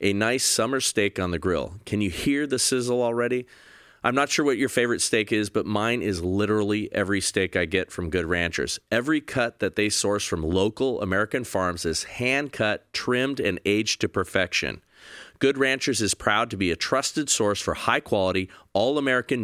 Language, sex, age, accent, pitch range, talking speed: English, male, 40-59, American, 95-130 Hz, 185 wpm